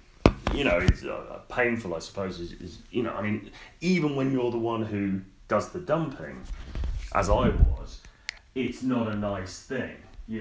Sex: male